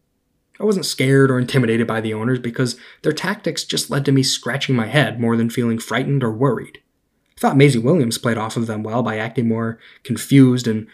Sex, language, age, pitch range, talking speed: male, English, 10-29, 115-150 Hz, 210 wpm